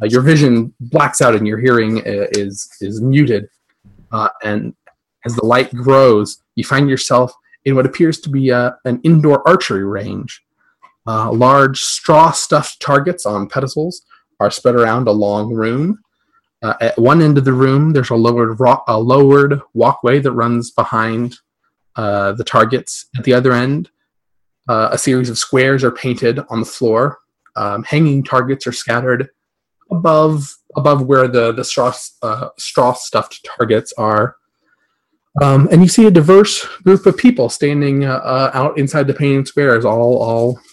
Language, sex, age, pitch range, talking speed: English, male, 30-49, 115-145 Hz, 165 wpm